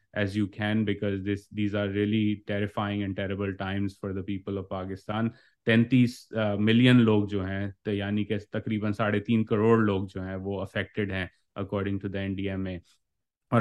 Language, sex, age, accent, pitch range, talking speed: English, male, 30-49, Indian, 100-110 Hz, 130 wpm